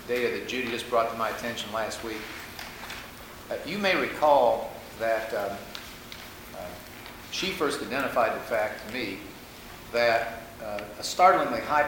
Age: 50-69